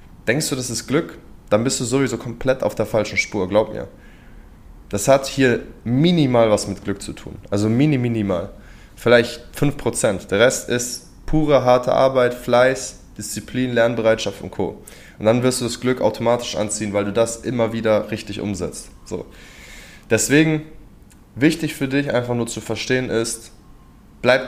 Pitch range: 105-125 Hz